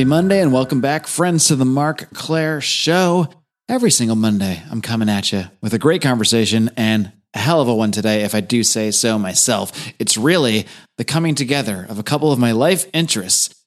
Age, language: 30-49, English